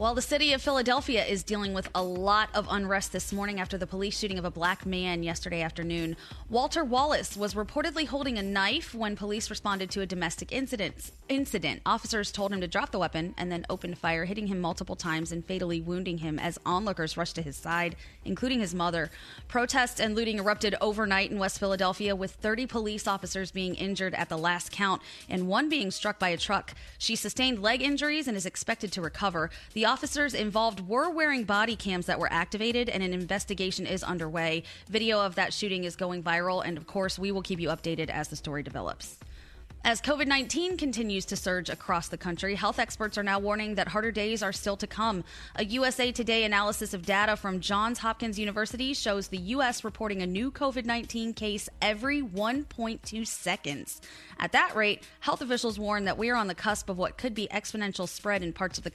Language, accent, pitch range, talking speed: English, American, 180-225 Hz, 200 wpm